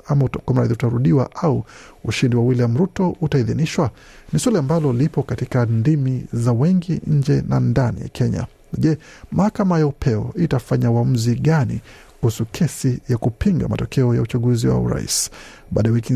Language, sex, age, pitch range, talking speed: Swahili, male, 50-69, 120-150 Hz, 145 wpm